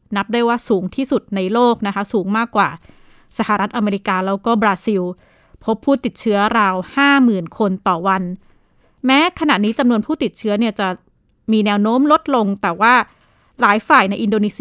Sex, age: female, 20-39